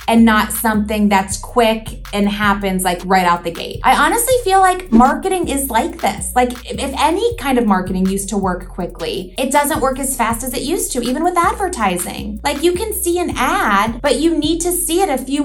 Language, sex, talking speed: English, female, 220 wpm